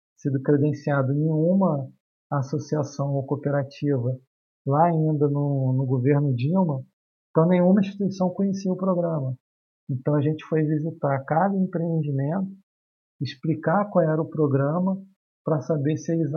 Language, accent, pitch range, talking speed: English, Brazilian, 135-165 Hz, 130 wpm